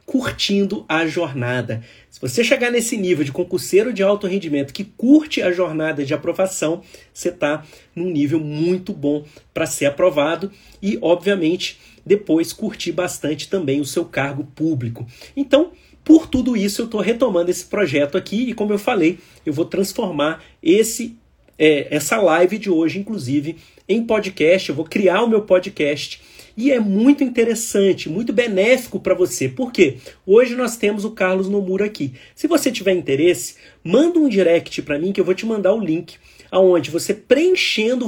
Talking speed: 165 wpm